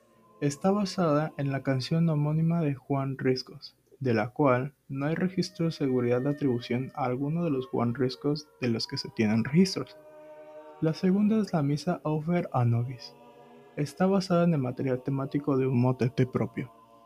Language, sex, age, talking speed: Spanish, male, 20-39, 170 wpm